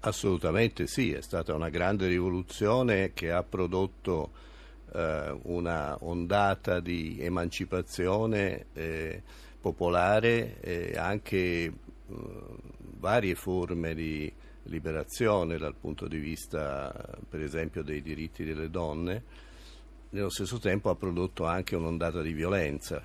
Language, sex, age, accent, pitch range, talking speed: Italian, male, 50-69, native, 80-90 Hz, 110 wpm